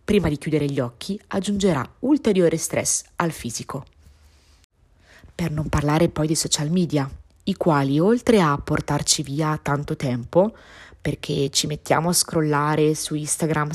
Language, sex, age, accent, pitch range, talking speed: Italian, female, 20-39, native, 140-175 Hz, 140 wpm